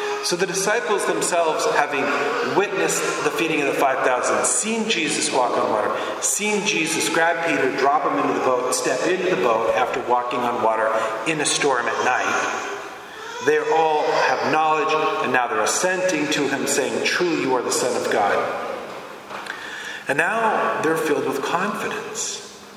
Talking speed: 165 wpm